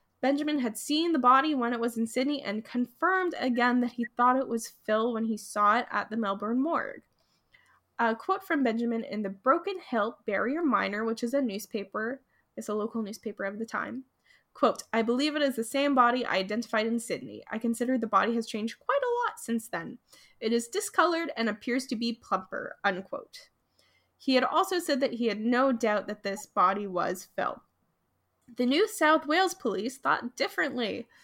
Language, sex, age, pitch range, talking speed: English, female, 10-29, 225-300 Hz, 195 wpm